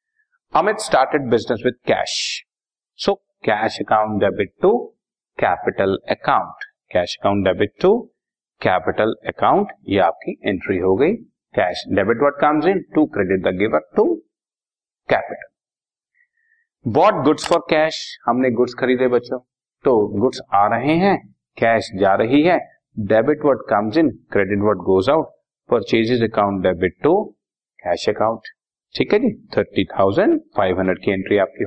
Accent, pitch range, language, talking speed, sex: native, 110-155 Hz, Hindi, 120 wpm, male